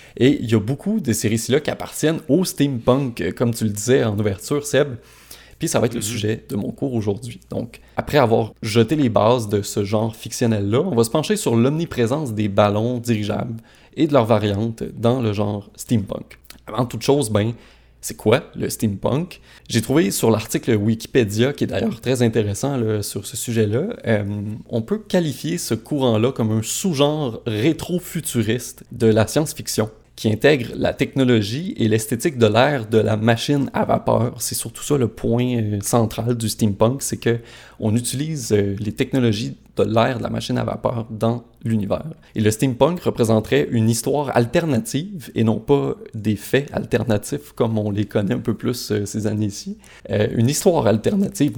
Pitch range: 110-135 Hz